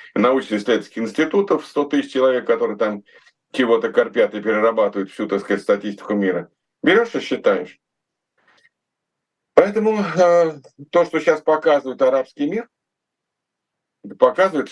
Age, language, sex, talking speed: 50-69, Russian, male, 110 wpm